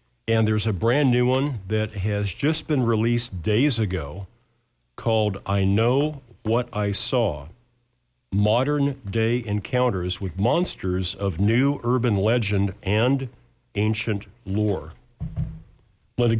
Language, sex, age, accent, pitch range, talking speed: English, male, 50-69, American, 100-125 Hz, 115 wpm